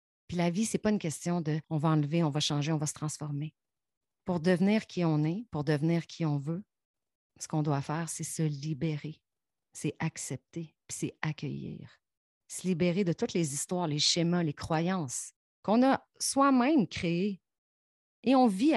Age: 30-49